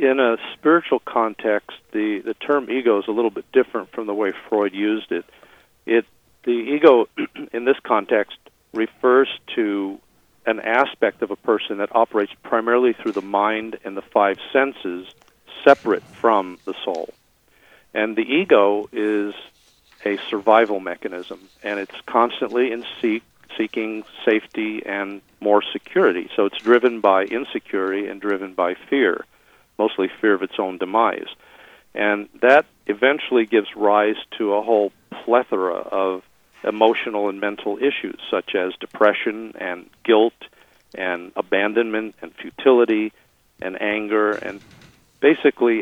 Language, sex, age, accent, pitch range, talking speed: English, male, 50-69, American, 100-115 Hz, 140 wpm